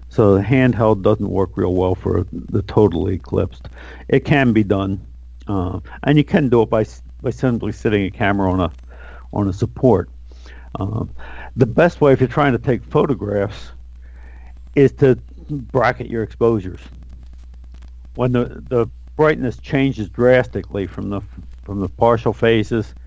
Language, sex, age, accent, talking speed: English, male, 50-69, American, 155 wpm